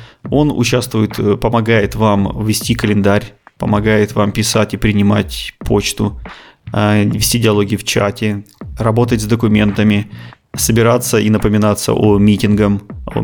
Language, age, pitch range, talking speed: Russian, 20-39, 105-115 Hz, 105 wpm